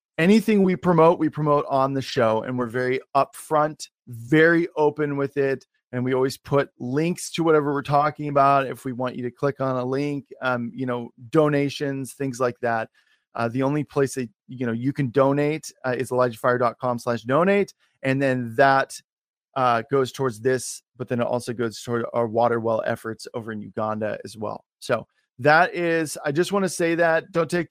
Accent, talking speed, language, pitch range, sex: American, 195 wpm, English, 125-155 Hz, male